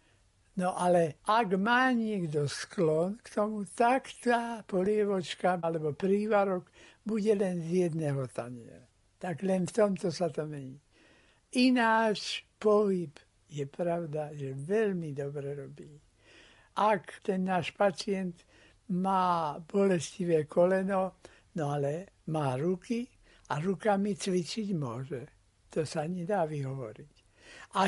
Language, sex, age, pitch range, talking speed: Slovak, male, 60-79, 150-205 Hz, 115 wpm